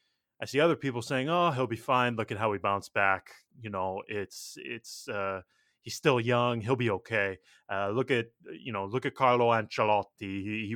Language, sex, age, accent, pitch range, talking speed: English, male, 20-39, American, 100-135 Hz, 205 wpm